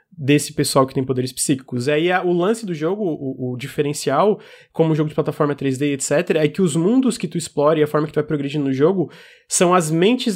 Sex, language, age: male, Portuguese, 20-39